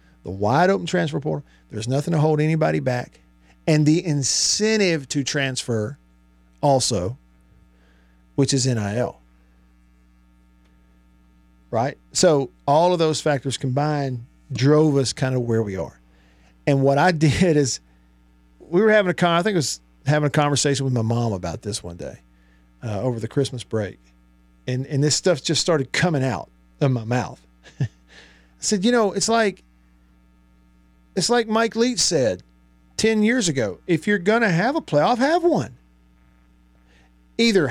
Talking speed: 155 wpm